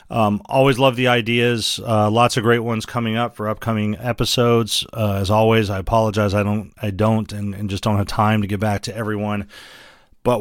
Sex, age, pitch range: male, 40-59, 105-125 Hz